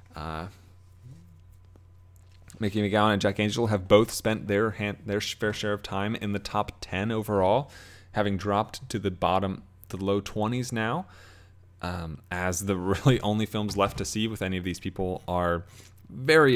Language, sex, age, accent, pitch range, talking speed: English, male, 20-39, American, 90-110 Hz, 170 wpm